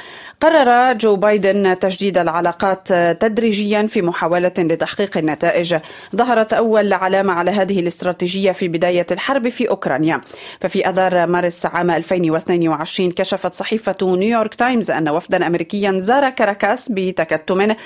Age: 30-49